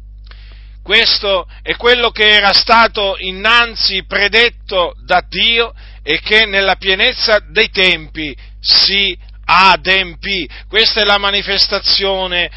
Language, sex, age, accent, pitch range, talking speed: Italian, male, 40-59, native, 135-205 Hz, 105 wpm